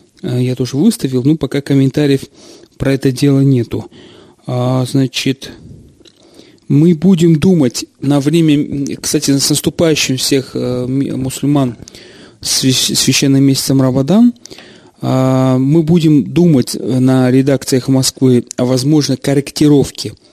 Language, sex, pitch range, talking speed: Russian, male, 125-145 Hz, 100 wpm